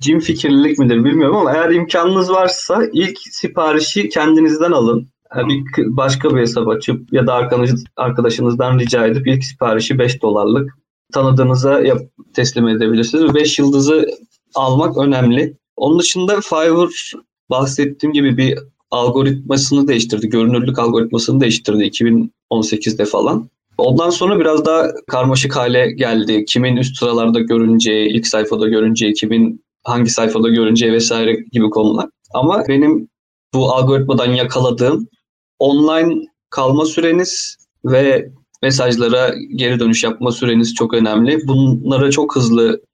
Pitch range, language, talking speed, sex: 115-145 Hz, Turkish, 120 wpm, male